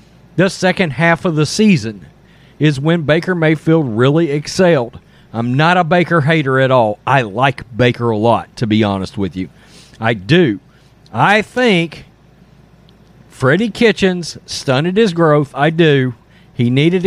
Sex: male